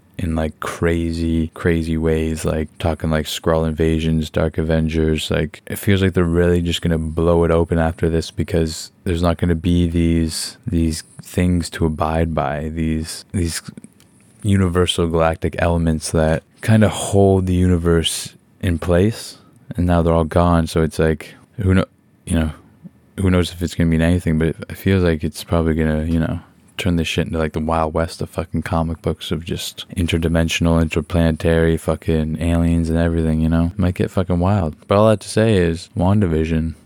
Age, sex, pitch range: 20-39, male, 80-100 Hz